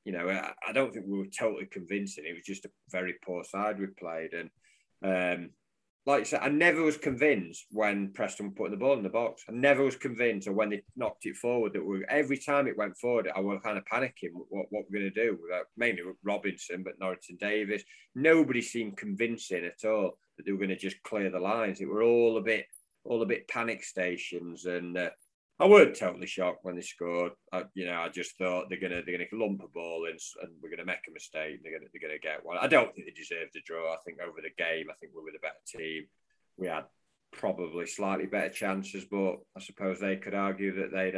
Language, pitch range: English, 90-105 Hz